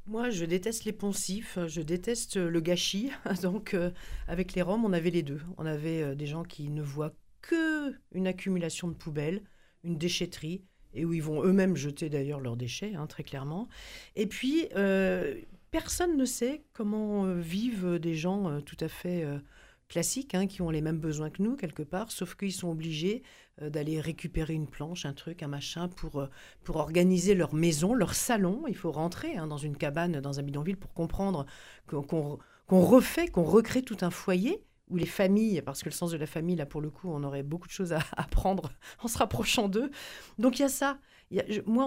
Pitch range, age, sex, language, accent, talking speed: 160-210 Hz, 50-69, female, French, French, 210 wpm